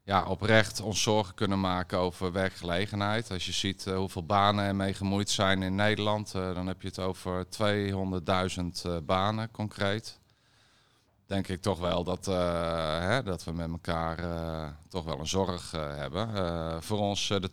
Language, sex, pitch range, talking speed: Dutch, male, 90-105 Hz, 160 wpm